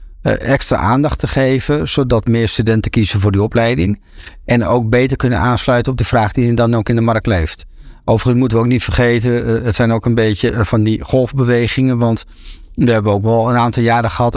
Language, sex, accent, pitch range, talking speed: Dutch, male, Dutch, 105-130 Hz, 210 wpm